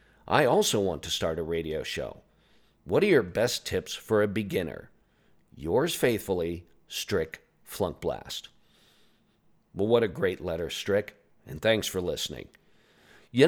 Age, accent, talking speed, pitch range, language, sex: 50-69, American, 140 wpm, 90-125 Hz, English, male